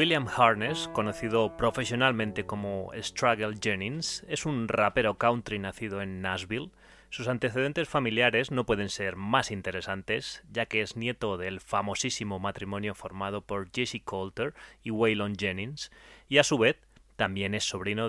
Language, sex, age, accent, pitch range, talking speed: Spanish, male, 30-49, Spanish, 100-125 Hz, 145 wpm